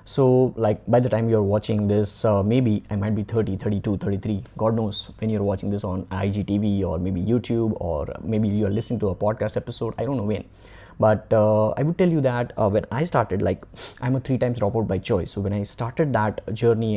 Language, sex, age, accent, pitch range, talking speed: English, male, 20-39, Indian, 100-125 Hz, 235 wpm